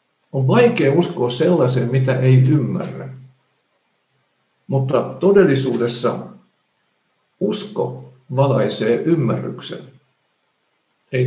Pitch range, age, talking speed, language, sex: 120-140 Hz, 50-69, 70 wpm, Finnish, male